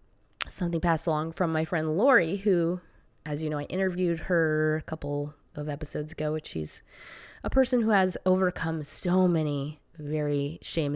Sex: female